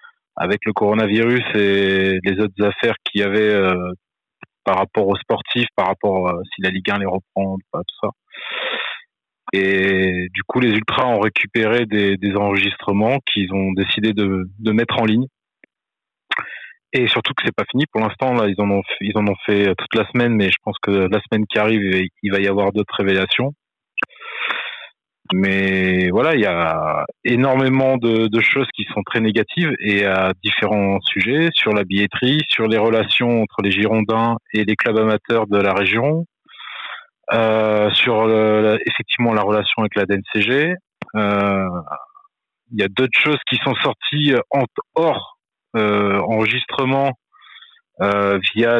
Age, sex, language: 30-49, male, French